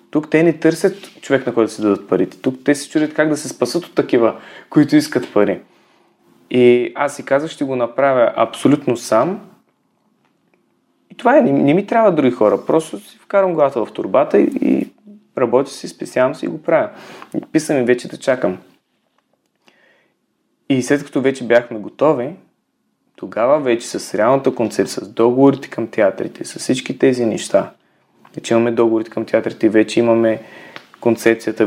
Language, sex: Bulgarian, male